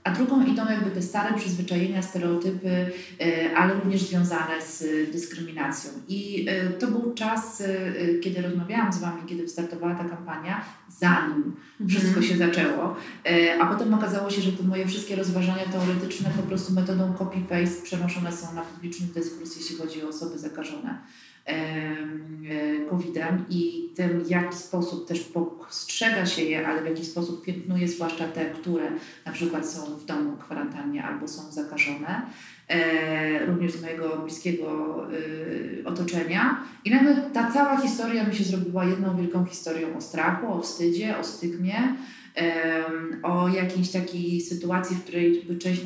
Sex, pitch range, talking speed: female, 165-190 Hz, 140 wpm